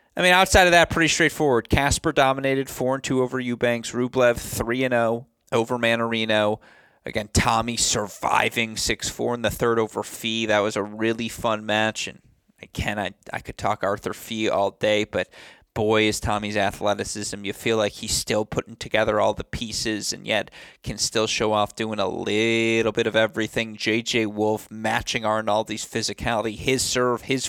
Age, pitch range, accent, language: 20-39, 105-115 Hz, American, English